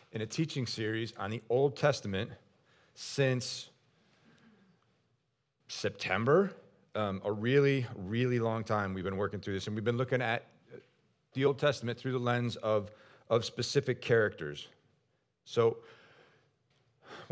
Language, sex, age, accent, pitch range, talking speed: English, male, 40-59, American, 100-130 Hz, 130 wpm